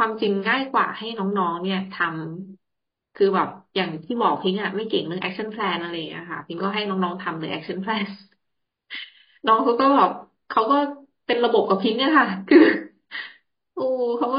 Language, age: Thai, 20-39